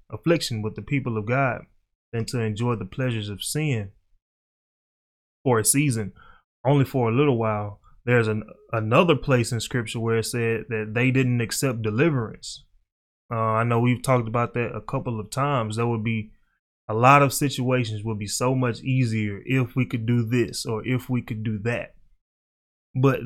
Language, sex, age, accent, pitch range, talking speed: English, male, 20-39, American, 110-130 Hz, 180 wpm